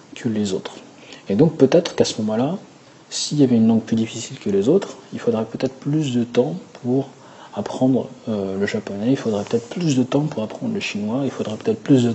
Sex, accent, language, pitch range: male, French, French, 105-140 Hz